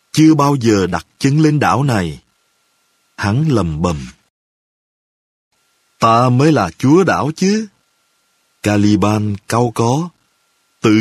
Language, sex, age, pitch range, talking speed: Vietnamese, male, 30-49, 105-155 Hz, 115 wpm